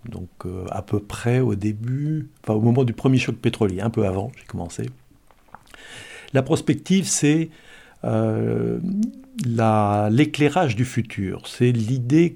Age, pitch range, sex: 60-79, 105-130 Hz, male